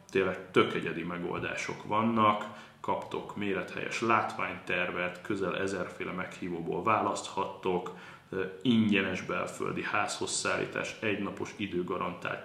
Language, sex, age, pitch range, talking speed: Hungarian, male, 20-39, 95-115 Hz, 75 wpm